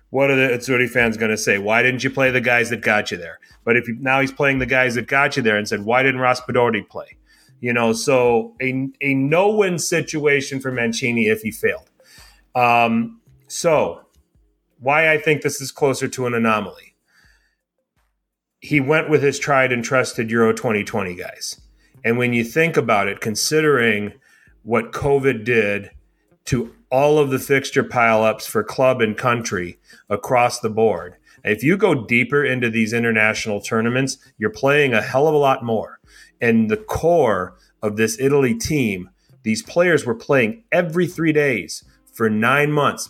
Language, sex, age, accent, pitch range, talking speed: English, male, 30-49, American, 115-140 Hz, 175 wpm